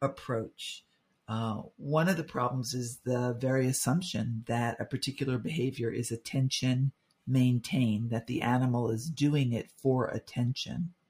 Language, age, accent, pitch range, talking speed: English, 50-69, American, 120-140 Hz, 135 wpm